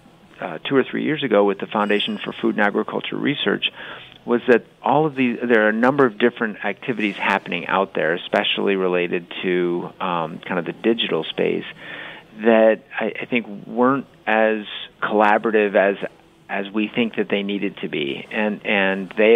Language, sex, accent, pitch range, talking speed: English, male, American, 95-110 Hz, 175 wpm